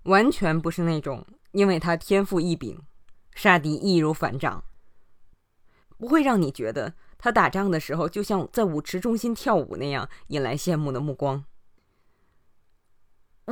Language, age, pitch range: Chinese, 20-39, 135-195 Hz